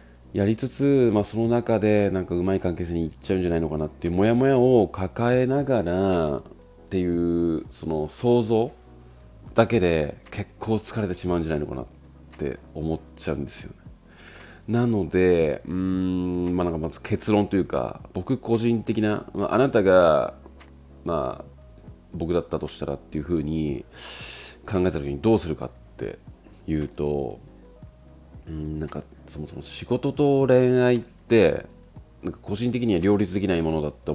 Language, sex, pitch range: Japanese, male, 75-105 Hz